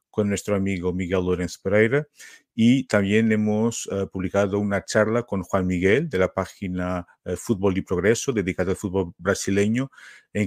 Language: Spanish